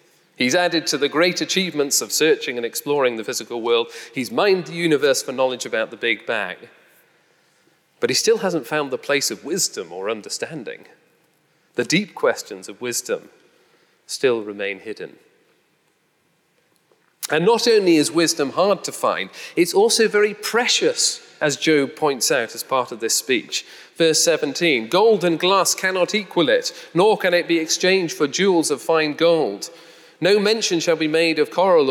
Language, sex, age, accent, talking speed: English, male, 40-59, British, 165 wpm